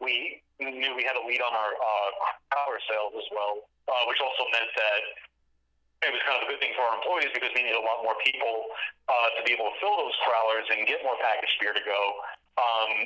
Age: 40-59